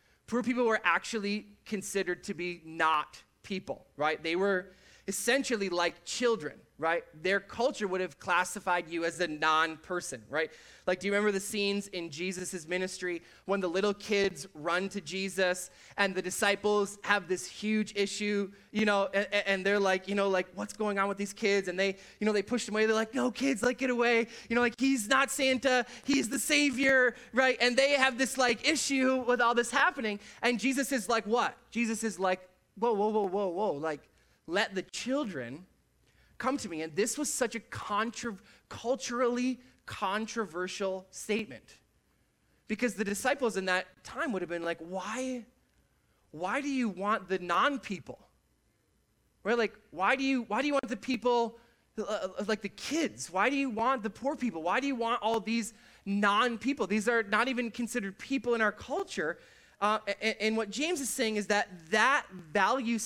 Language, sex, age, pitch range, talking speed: English, male, 20-39, 190-245 Hz, 185 wpm